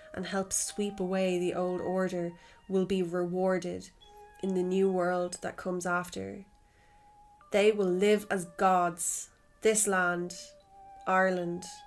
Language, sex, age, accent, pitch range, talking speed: English, female, 20-39, Irish, 180-205 Hz, 125 wpm